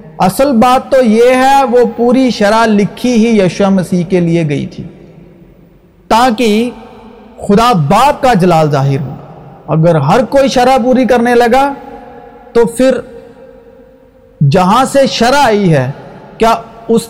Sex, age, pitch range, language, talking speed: male, 50-69, 195-255 Hz, Urdu, 135 wpm